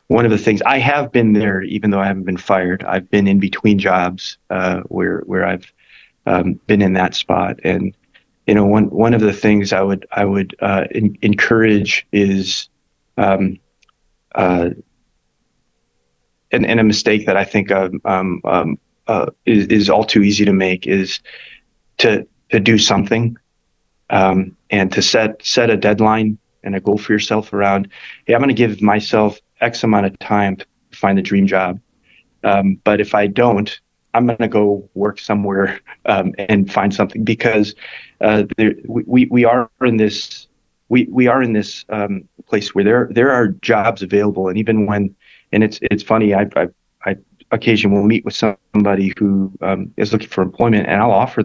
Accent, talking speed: American, 180 wpm